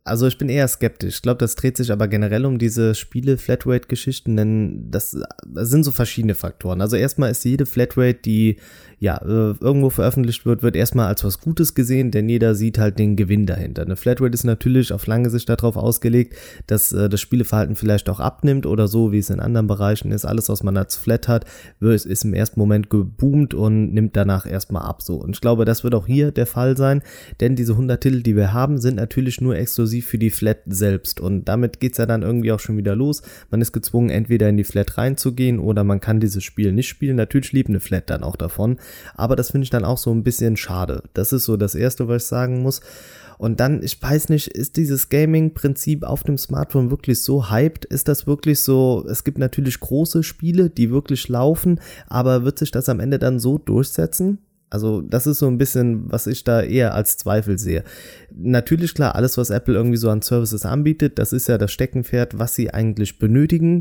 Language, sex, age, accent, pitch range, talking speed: German, male, 20-39, German, 105-130 Hz, 215 wpm